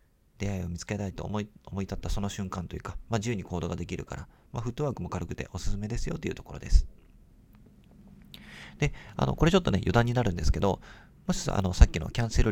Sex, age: male, 40-59